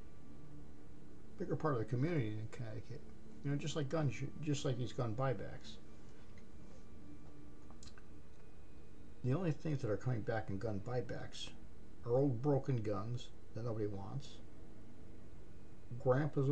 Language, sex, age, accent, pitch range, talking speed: English, male, 50-69, American, 100-125 Hz, 125 wpm